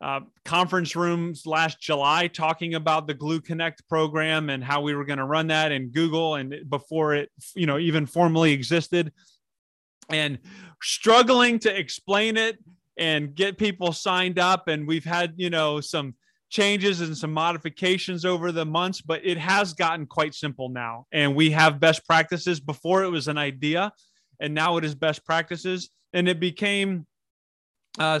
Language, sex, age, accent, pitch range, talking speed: English, male, 20-39, American, 150-180 Hz, 170 wpm